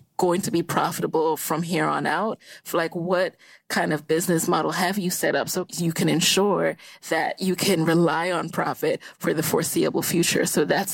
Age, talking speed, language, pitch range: 20-39, 190 wpm, English, 165-195 Hz